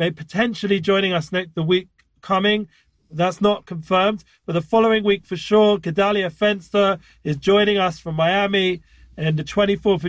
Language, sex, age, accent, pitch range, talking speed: English, male, 40-59, British, 175-200 Hz, 165 wpm